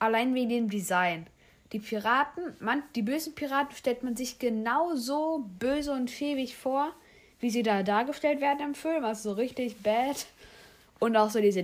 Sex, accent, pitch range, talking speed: female, German, 190-250 Hz, 175 wpm